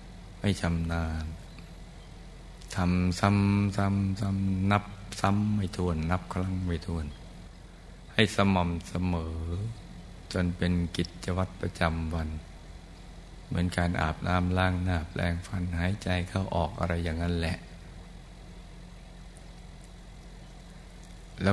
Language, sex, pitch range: Thai, male, 85-90 Hz